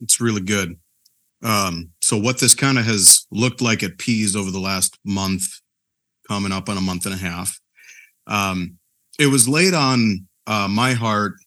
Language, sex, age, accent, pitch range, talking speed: English, male, 30-49, American, 100-125 Hz, 180 wpm